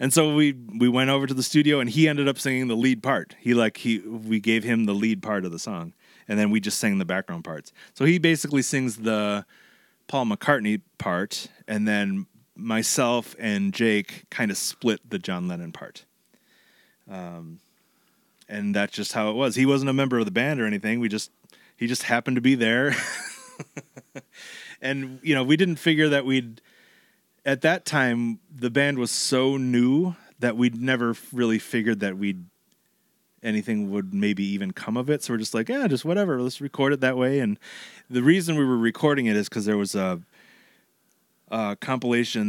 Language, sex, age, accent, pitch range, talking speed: English, male, 30-49, American, 105-135 Hz, 195 wpm